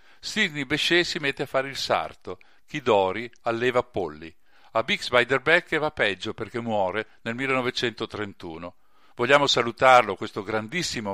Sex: male